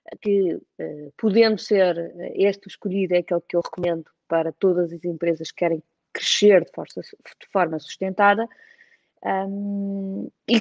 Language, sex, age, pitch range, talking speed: Portuguese, female, 20-39, 185-230 Hz, 125 wpm